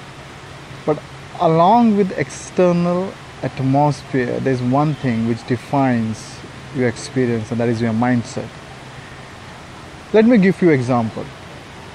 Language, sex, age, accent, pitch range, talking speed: English, male, 20-39, Indian, 130-170 Hz, 110 wpm